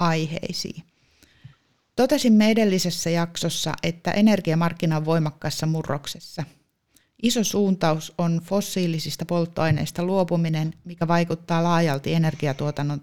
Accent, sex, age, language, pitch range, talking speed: native, female, 30-49, Finnish, 150-175 Hz, 85 wpm